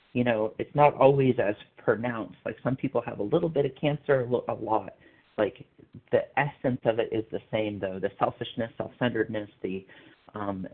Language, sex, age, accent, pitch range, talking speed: English, male, 40-59, American, 105-125 Hz, 180 wpm